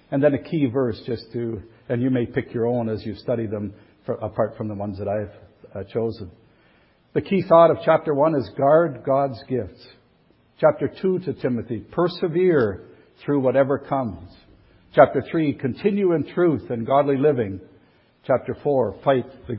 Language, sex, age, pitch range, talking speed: English, male, 60-79, 110-140 Hz, 165 wpm